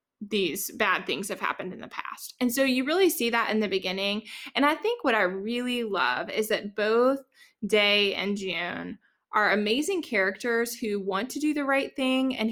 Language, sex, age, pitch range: English, female, 20-39, 205-240 Hz